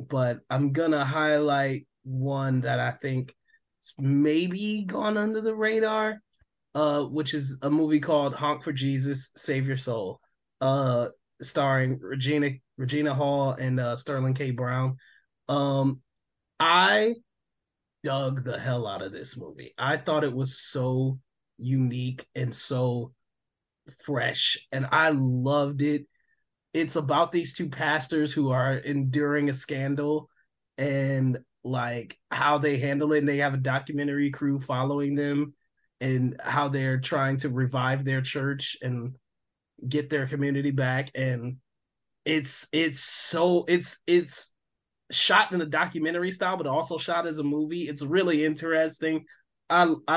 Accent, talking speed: American, 140 wpm